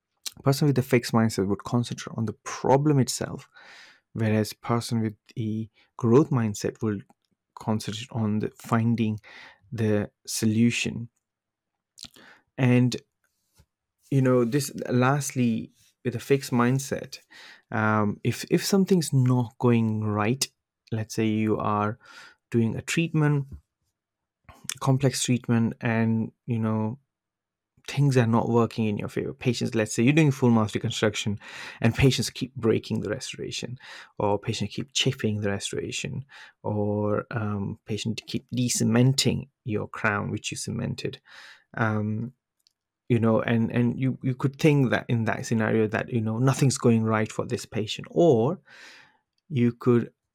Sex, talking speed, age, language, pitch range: male, 135 wpm, 30-49, English, 110-130 Hz